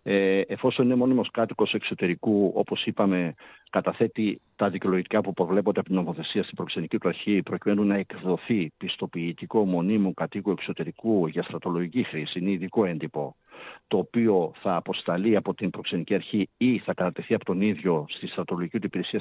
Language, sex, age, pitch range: Greek, male, 50-69, 90-105 Hz